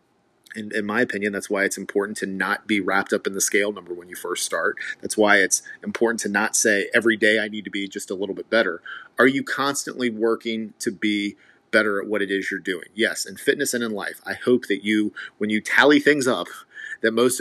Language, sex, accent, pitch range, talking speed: English, male, American, 100-125 Hz, 235 wpm